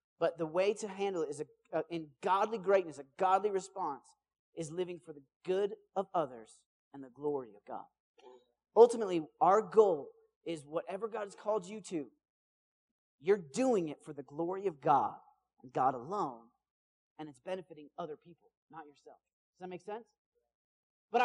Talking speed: 170 wpm